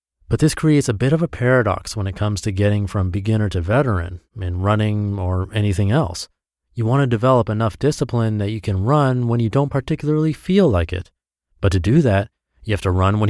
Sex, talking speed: male, 210 wpm